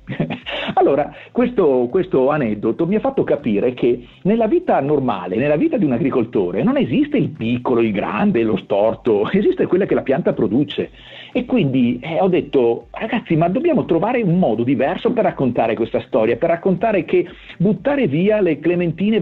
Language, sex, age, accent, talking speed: Italian, male, 50-69, native, 170 wpm